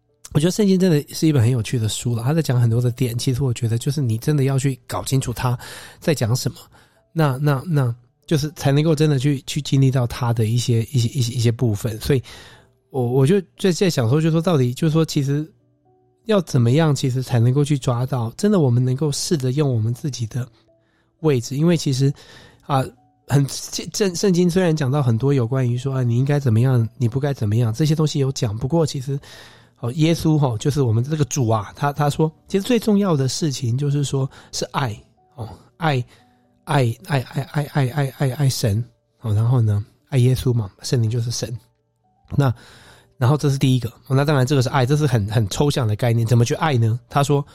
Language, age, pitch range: Chinese, 20-39, 120-150 Hz